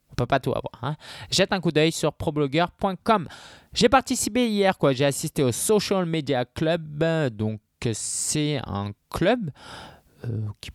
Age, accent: 20-39, French